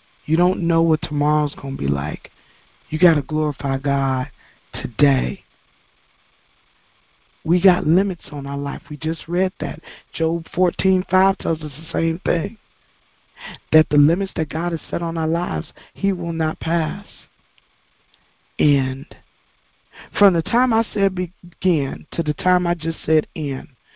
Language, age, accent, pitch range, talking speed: English, 40-59, American, 140-170 Hz, 150 wpm